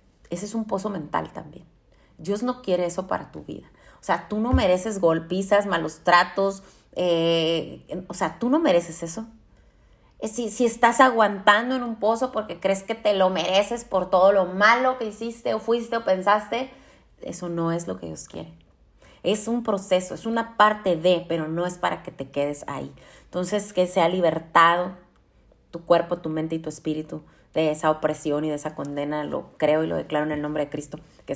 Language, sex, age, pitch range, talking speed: Spanish, female, 30-49, 160-220 Hz, 195 wpm